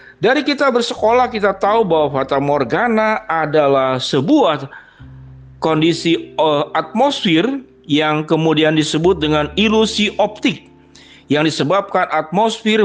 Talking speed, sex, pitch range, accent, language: 105 wpm, male, 155-220 Hz, native, Indonesian